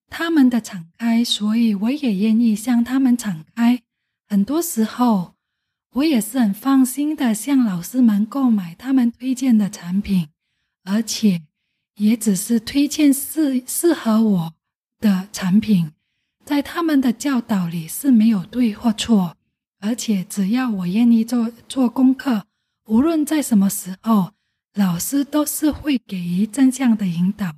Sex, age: female, 20-39